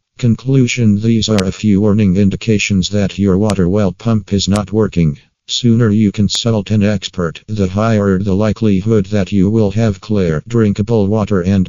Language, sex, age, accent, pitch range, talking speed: English, male, 50-69, American, 95-110 Hz, 165 wpm